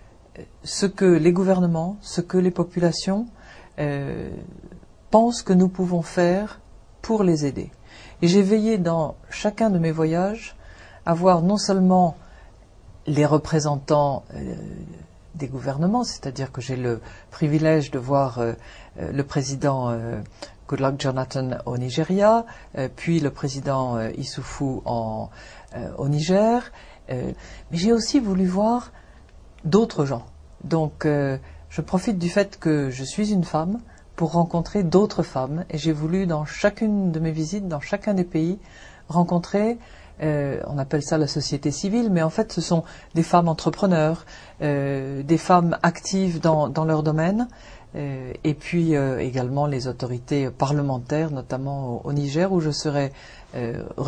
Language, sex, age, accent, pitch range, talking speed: English, female, 50-69, French, 135-180 Hz, 150 wpm